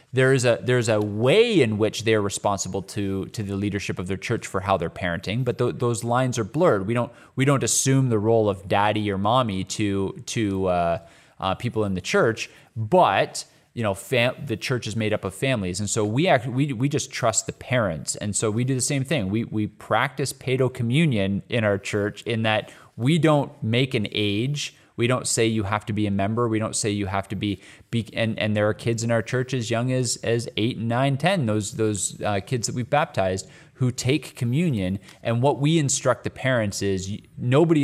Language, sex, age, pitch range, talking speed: English, male, 20-39, 100-125 Hz, 225 wpm